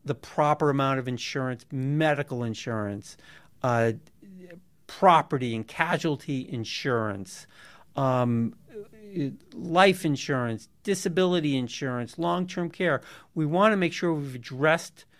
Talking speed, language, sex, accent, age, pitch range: 105 wpm, English, male, American, 50-69, 140-175 Hz